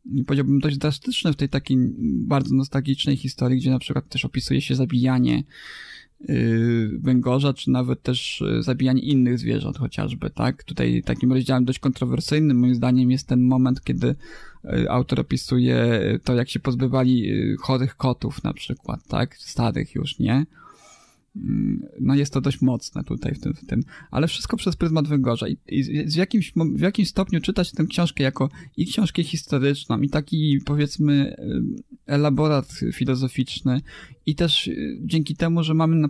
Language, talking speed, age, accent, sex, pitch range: Polish, 145 wpm, 20-39, native, male, 130-155 Hz